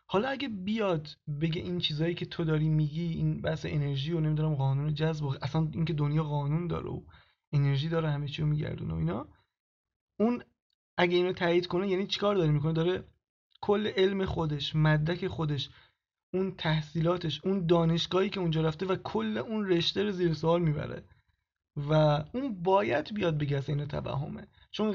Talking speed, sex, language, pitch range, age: 165 wpm, male, Persian, 155-185 Hz, 20-39